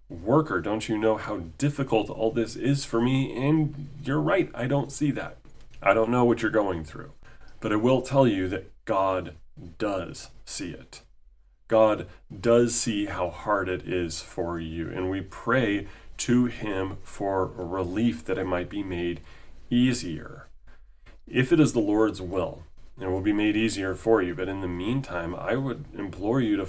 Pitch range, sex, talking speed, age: 95-120 Hz, male, 180 wpm, 30-49